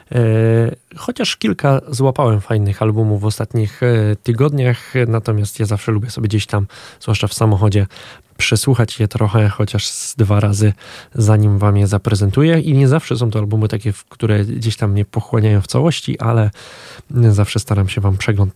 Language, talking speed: Polish, 155 wpm